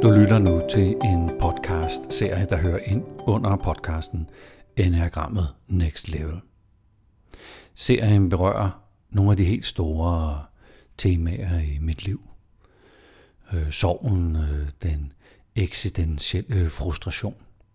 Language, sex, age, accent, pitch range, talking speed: Danish, male, 60-79, native, 75-100 Hz, 110 wpm